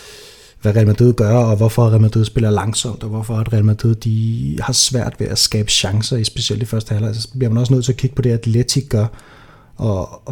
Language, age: Danish, 30-49